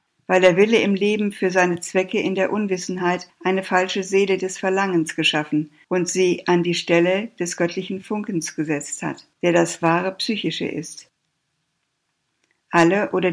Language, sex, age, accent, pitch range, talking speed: German, female, 60-79, German, 165-190 Hz, 155 wpm